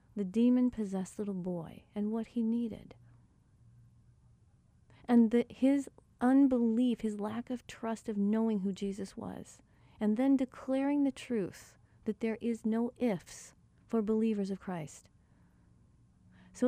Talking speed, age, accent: 125 wpm, 40-59, American